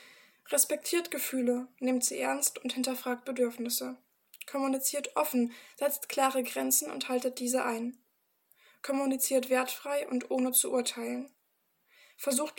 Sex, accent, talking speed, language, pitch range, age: female, German, 115 wpm, German, 245-270 Hz, 20-39